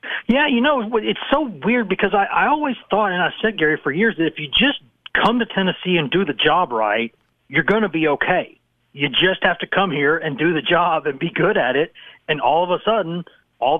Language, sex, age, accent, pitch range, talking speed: English, male, 40-59, American, 140-200 Hz, 240 wpm